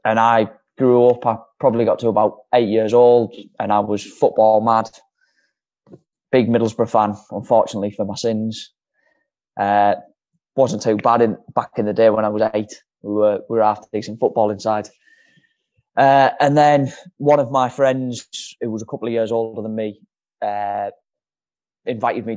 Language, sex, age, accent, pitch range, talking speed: English, male, 20-39, British, 105-120 Hz, 170 wpm